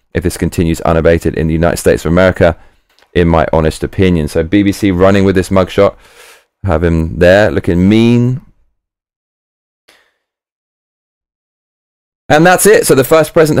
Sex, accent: male, British